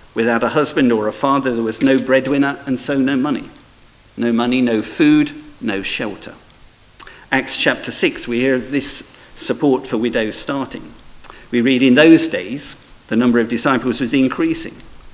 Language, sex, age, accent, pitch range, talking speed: English, male, 50-69, British, 120-155 Hz, 165 wpm